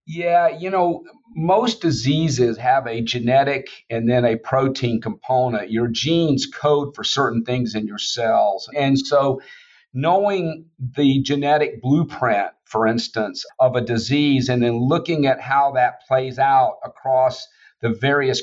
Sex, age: male, 50-69